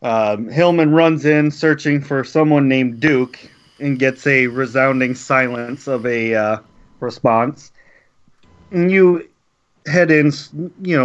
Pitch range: 125-150 Hz